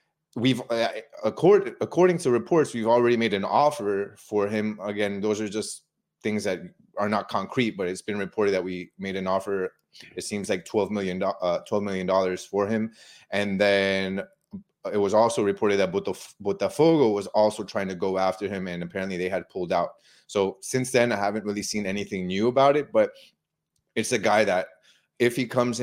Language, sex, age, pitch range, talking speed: English, male, 30-49, 95-120 Hz, 195 wpm